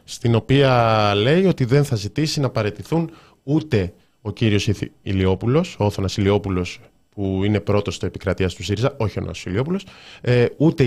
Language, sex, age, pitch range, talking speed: Greek, male, 20-39, 105-150 Hz, 145 wpm